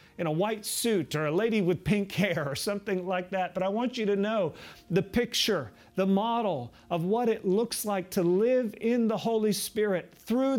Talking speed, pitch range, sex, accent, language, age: 205 wpm, 170-210 Hz, male, American, English, 40-59